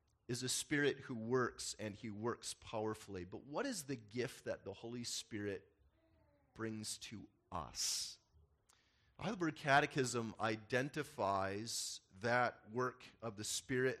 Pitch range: 120-155 Hz